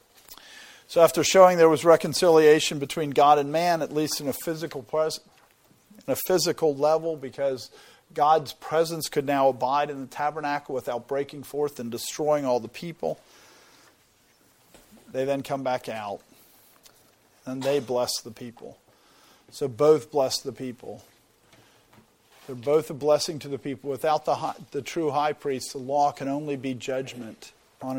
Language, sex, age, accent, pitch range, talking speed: English, male, 50-69, American, 130-160 Hz, 155 wpm